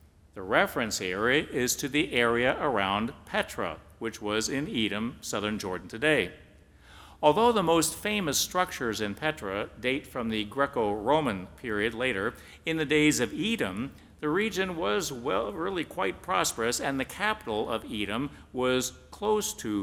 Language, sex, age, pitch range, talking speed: English, male, 50-69, 105-140 Hz, 145 wpm